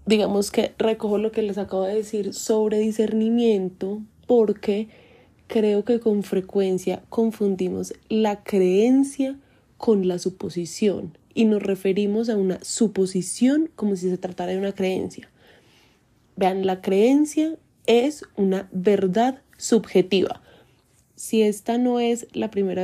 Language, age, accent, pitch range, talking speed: Spanish, 20-39, Colombian, 190-225 Hz, 125 wpm